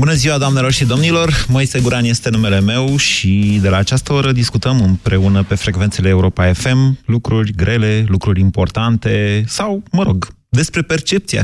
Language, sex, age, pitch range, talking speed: Romanian, male, 30-49, 95-115 Hz, 155 wpm